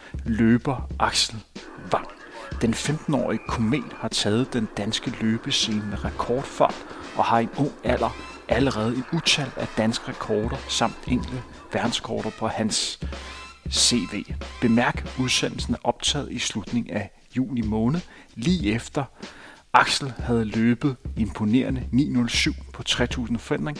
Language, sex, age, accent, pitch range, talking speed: Danish, male, 40-59, native, 110-150 Hz, 125 wpm